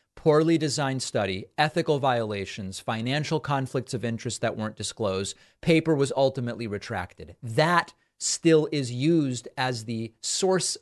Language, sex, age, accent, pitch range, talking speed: English, male, 30-49, American, 115-155 Hz, 130 wpm